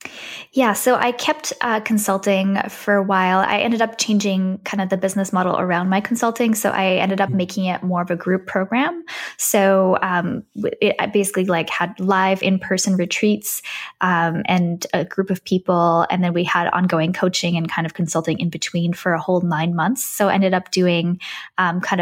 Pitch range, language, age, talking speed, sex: 175-200 Hz, English, 10-29, 195 wpm, female